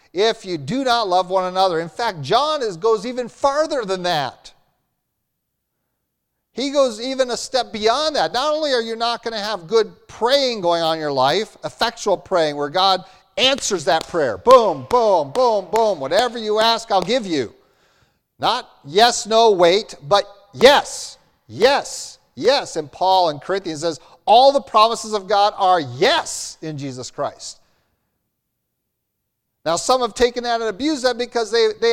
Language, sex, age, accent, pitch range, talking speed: English, male, 50-69, American, 190-255 Hz, 165 wpm